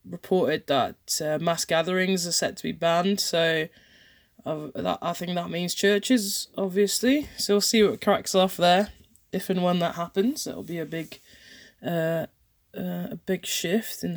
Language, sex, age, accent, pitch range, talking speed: English, female, 20-39, British, 175-220 Hz, 155 wpm